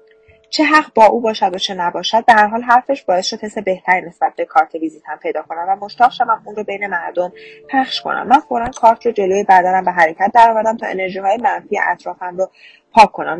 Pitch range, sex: 185-260 Hz, female